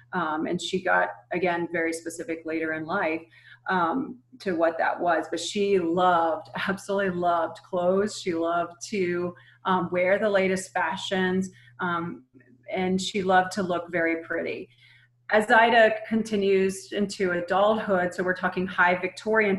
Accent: American